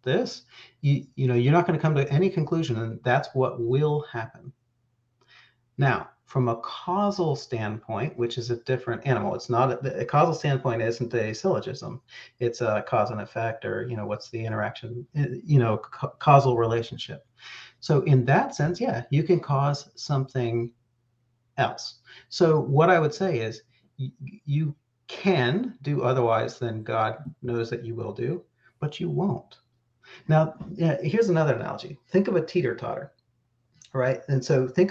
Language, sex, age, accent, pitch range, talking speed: English, male, 40-59, American, 120-155 Hz, 165 wpm